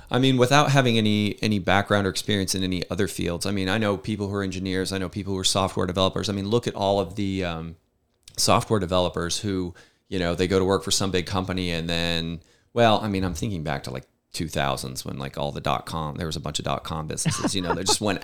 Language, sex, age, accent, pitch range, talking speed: English, male, 30-49, American, 95-120 Hz, 255 wpm